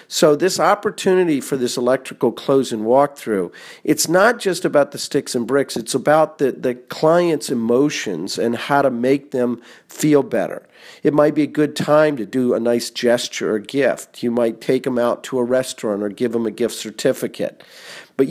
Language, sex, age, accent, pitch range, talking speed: English, male, 50-69, American, 120-145 Hz, 190 wpm